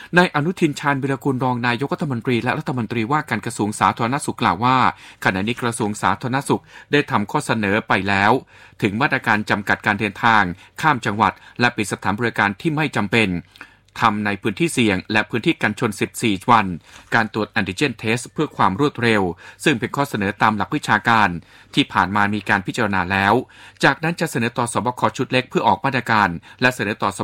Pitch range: 105-135 Hz